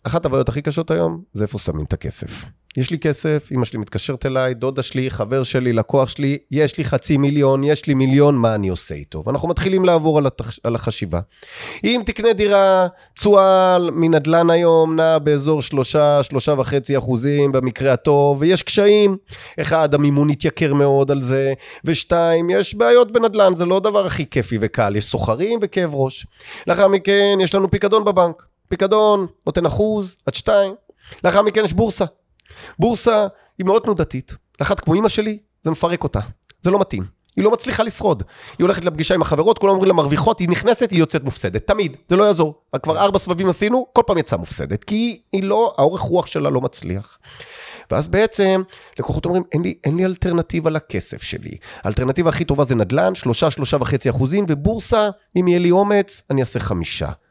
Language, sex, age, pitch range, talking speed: Hebrew, male, 30-49, 130-195 Hz, 160 wpm